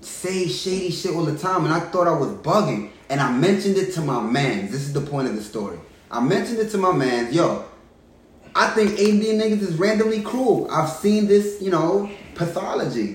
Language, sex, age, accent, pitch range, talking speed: English, male, 20-39, American, 125-185 Hz, 210 wpm